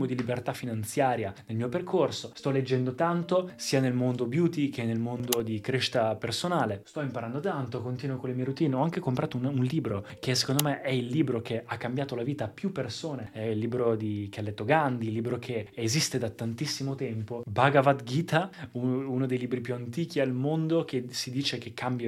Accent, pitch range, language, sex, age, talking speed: native, 115-140 Hz, Italian, male, 20-39, 205 wpm